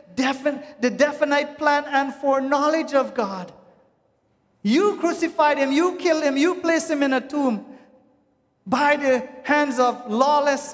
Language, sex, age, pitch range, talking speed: English, male, 40-59, 235-290 Hz, 135 wpm